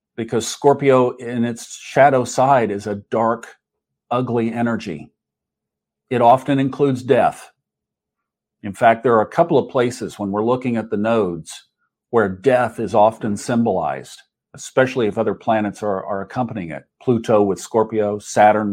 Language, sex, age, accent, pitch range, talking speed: English, male, 50-69, American, 110-130 Hz, 145 wpm